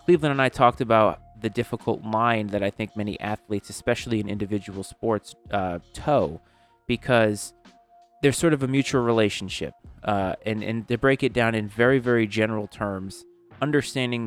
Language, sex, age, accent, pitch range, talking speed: English, male, 30-49, American, 100-120 Hz, 165 wpm